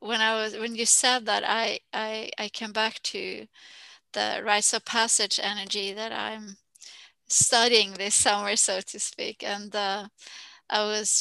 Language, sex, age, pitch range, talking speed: English, female, 20-39, 205-230 Hz, 160 wpm